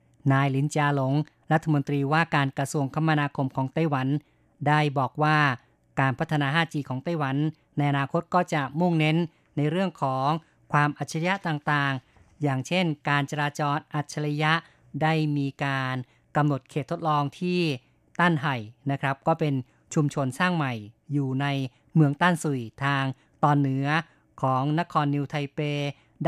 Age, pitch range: 20-39, 140-160 Hz